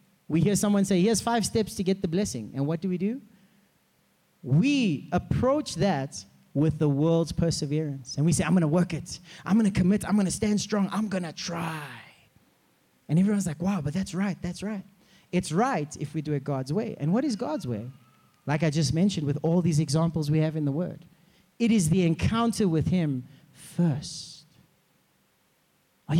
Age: 30-49